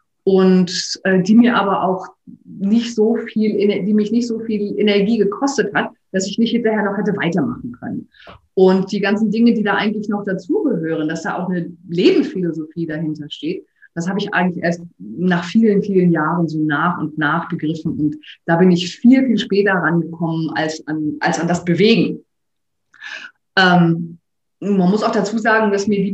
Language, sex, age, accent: German, female, 30-49, German